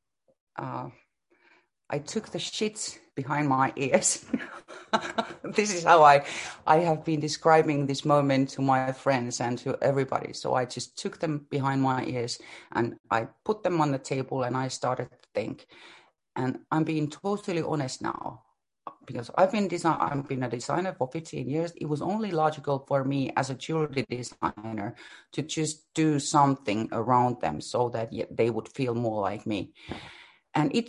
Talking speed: 170 wpm